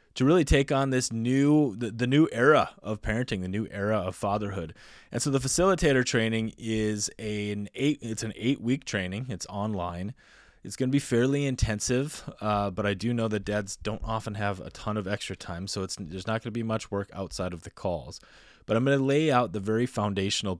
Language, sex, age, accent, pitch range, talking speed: English, male, 20-39, American, 95-120 Hz, 220 wpm